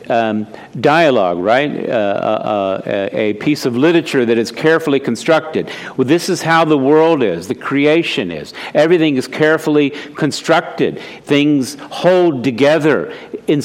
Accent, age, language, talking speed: American, 50-69, English, 140 wpm